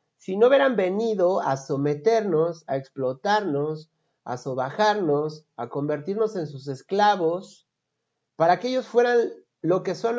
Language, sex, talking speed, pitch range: Spanish, male, 130 wpm, 155-215 Hz